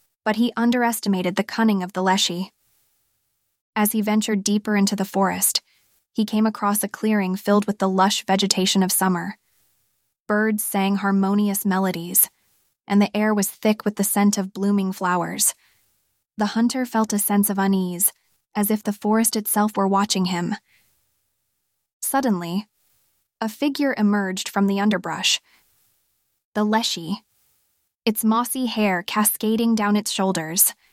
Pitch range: 190-215 Hz